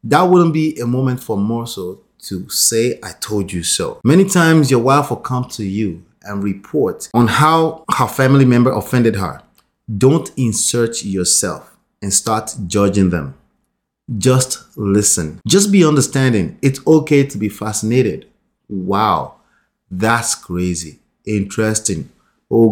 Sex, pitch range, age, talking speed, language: male, 105-150 Hz, 30-49, 140 wpm, English